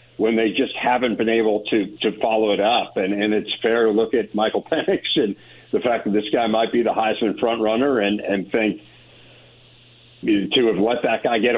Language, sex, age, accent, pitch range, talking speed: English, male, 50-69, American, 110-130 Hz, 215 wpm